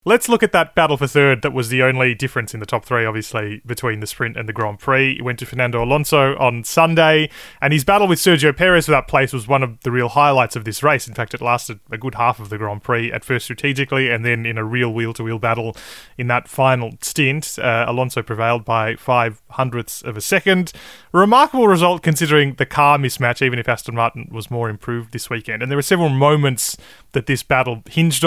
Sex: male